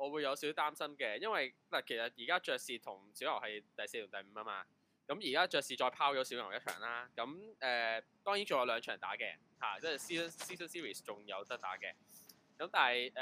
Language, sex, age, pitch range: Chinese, male, 20-39, 115-165 Hz